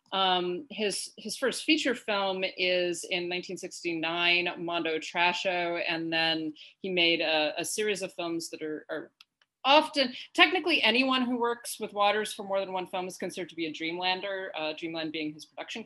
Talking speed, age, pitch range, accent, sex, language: 175 wpm, 30-49, 155-210 Hz, American, female, English